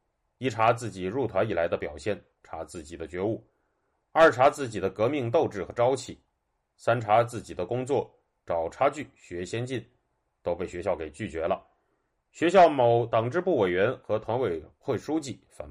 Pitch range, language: 95-130 Hz, Chinese